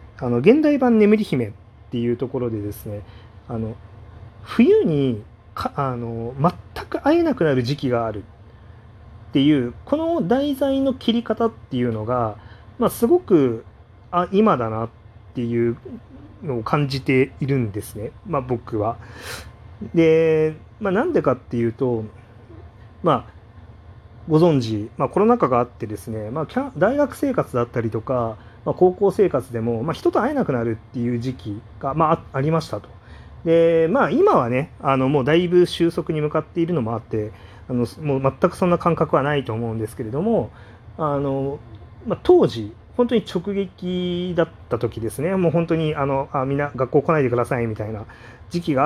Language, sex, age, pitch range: Japanese, male, 40-59, 110-165 Hz